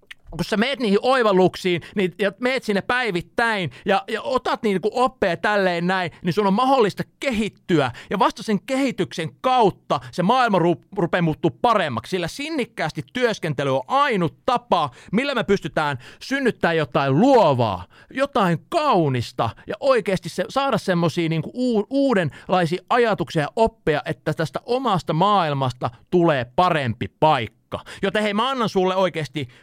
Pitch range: 160-230 Hz